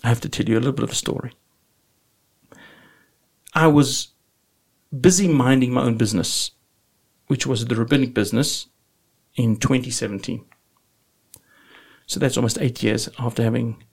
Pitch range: 115-150 Hz